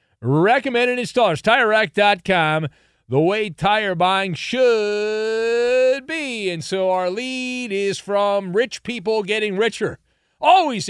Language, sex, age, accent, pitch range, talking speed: English, male, 40-59, American, 150-210 Hz, 110 wpm